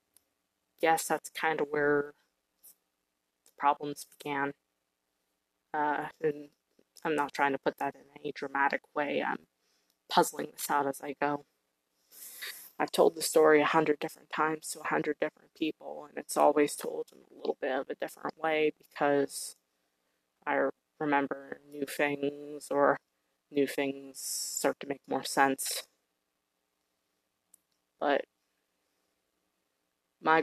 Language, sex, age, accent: English, female, 20-39, American